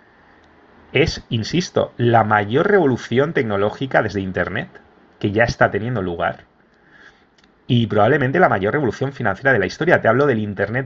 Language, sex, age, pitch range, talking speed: English, male, 30-49, 105-130 Hz, 145 wpm